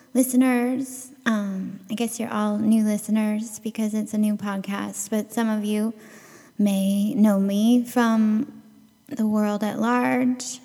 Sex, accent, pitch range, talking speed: female, American, 195-240 Hz, 140 wpm